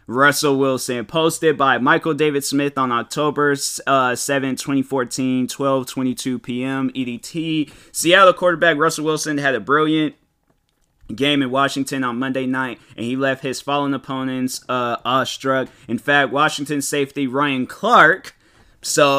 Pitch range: 130-165 Hz